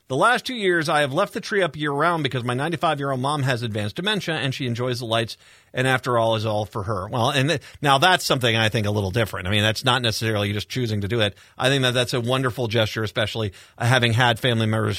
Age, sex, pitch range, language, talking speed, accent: 40-59, male, 120-170 Hz, English, 250 wpm, American